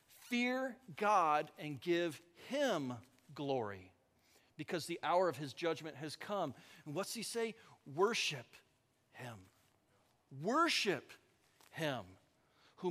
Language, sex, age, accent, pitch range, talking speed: English, male, 50-69, American, 150-230 Hz, 105 wpm